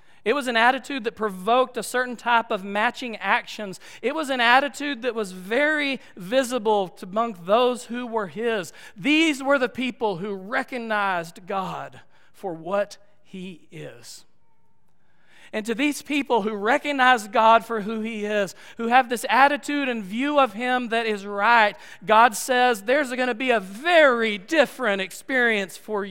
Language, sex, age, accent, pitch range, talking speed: English, male, 40-59, American, 155-245 Hz, 160 wpm